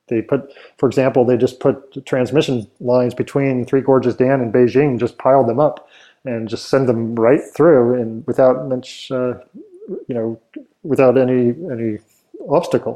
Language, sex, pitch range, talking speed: English, male, 120-140 Hz, 160 wpm